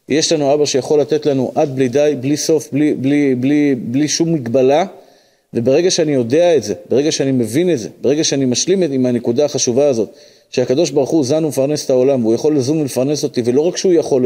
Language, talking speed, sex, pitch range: Hebrew, 210 wpm, male, 130-165 Hz